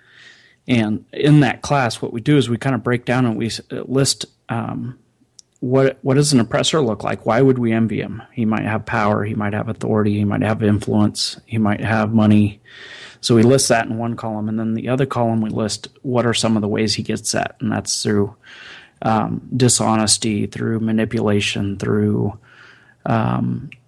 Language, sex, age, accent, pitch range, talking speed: English, male, 30-49, American, 110-130 Hz, 195 wpm